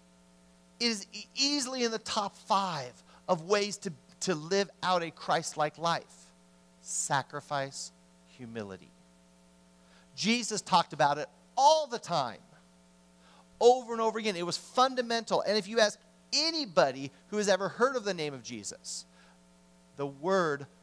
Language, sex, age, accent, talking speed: English, male, 40-59, American, 140 wpm